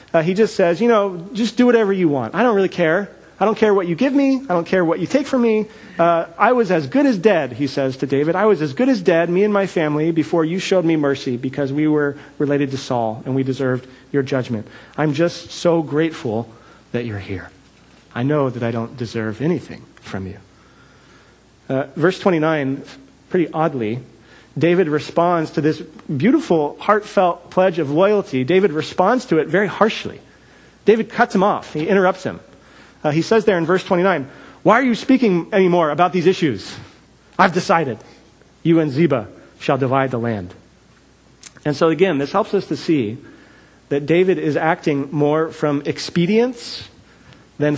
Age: 40-59